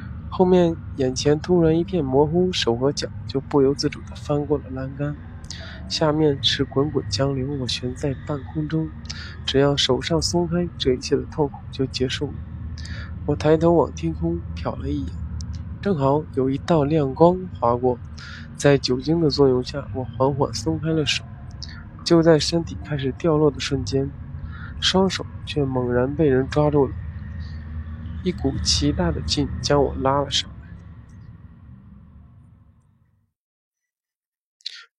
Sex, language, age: male, Chinese, 20-39